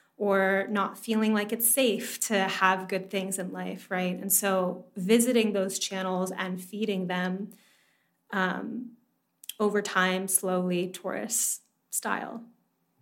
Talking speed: 125 wpm